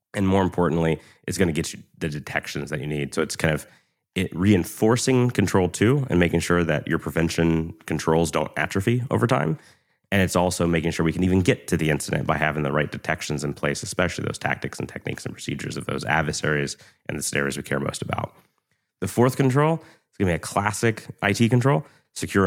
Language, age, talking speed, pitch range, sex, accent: English, 30-49, 215 wpm, 75-100 Hz, male, American